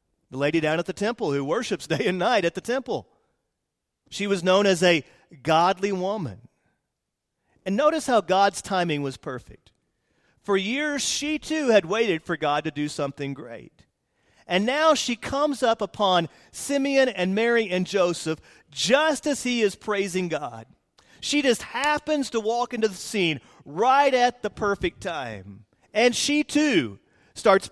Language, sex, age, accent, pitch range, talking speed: English, male, 40-59, American, 165-255 Hz, 160 wpm